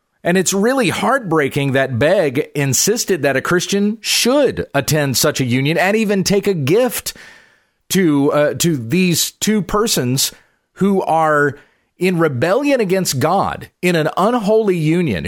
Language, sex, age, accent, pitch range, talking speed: English, male, 40-59, American, 145-200 Hz, 140 wpm